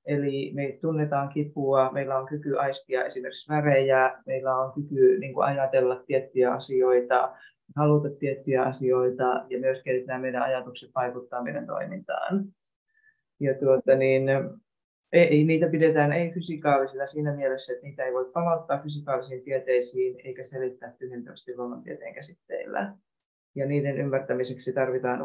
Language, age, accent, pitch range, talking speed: Finnish, 30-49, native, 130-160 Hz, 125 wpm